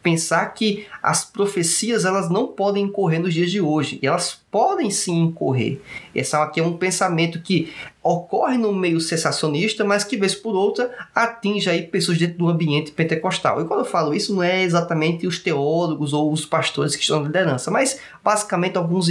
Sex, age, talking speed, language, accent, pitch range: male, 20-39, 180 wpm, Portuguese, Brazilian, 155-210 Hz